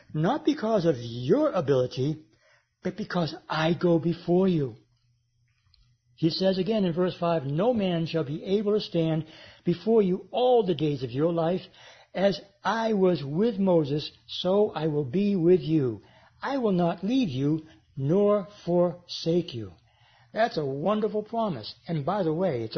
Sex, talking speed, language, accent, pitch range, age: male, 160 wpm, English, American, 135-190 Hz, 60-79